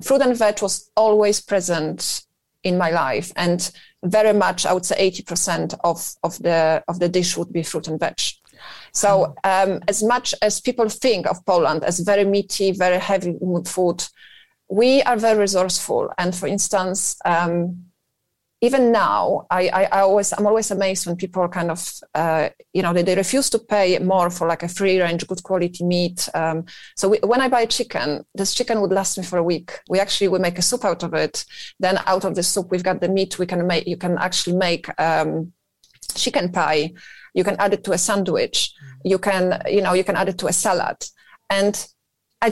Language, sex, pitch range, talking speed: English, female, 175-210 Hz, 205 wpm